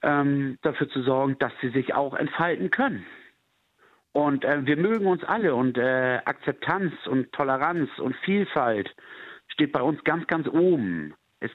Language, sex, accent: German, male, German